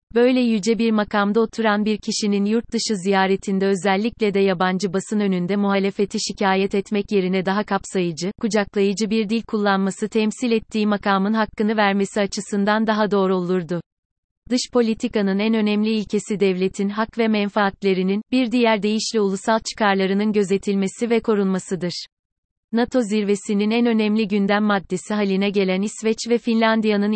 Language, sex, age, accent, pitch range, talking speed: Turkish, female, 30-49, native, 195-220 Hz, 135 wpm